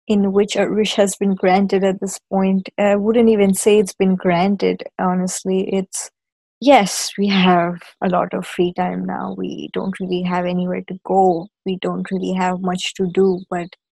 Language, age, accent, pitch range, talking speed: English, 20-39, Indian, 185-200 Hz, 185 wpm